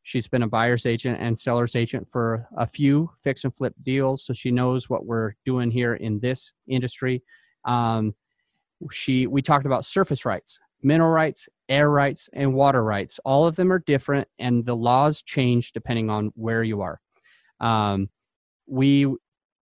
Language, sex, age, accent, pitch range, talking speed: English, male, 30-49, American, 120-145 Hz, 165 wpm